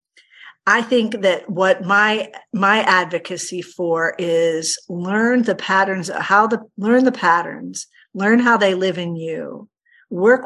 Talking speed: 140 wpm